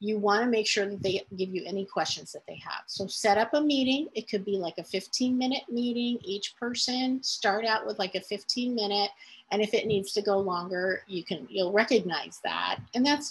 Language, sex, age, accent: English, female, 40-59, American